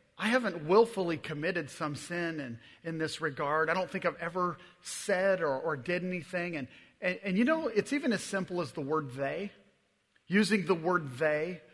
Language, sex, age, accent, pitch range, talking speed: English, male, 40-59, American, 155-190 Hz, 190 wpm